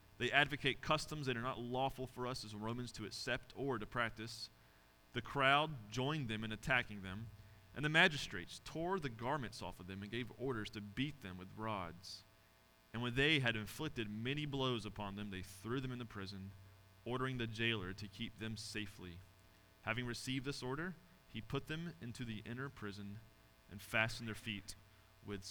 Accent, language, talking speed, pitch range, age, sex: American, English, 185 wpm, 95-130 Hz, 30-49, male